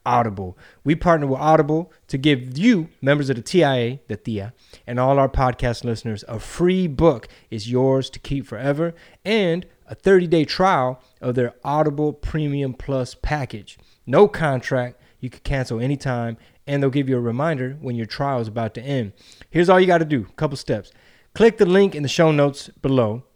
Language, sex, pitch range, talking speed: English, male, 125-165 Hz, 190 wpm